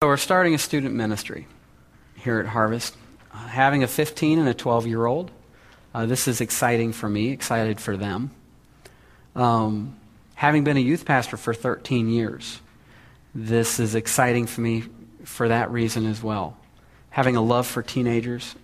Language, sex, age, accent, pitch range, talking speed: English, male, 40-59, American, 110-135 Hz, 160 wpm